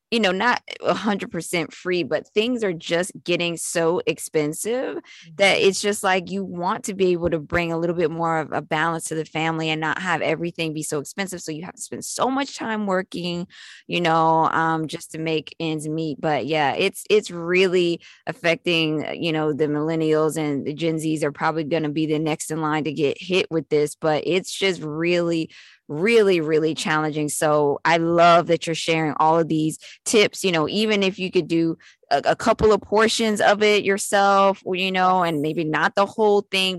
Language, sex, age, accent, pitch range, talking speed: English, female, 20-39, American, 160-195 Hz, 205 wpm